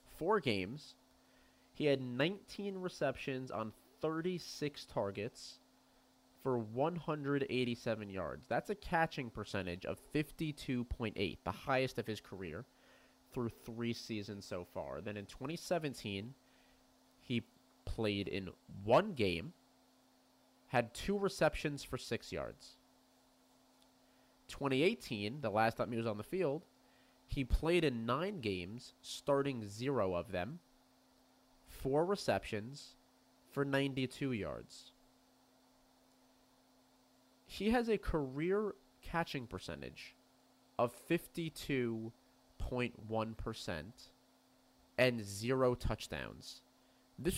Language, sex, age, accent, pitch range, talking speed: English, male, 30-49, American, 110-140 Hz, 100 wpm